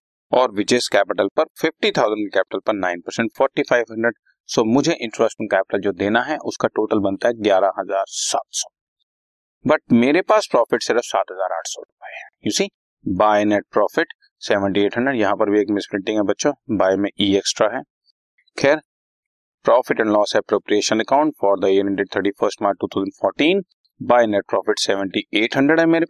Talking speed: 80 wpm